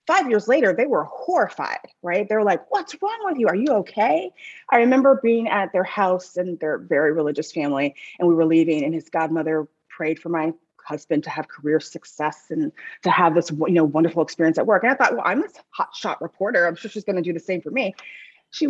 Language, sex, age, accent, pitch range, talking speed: English, female, 30-49, American, 165-240 Hz, 230 wpm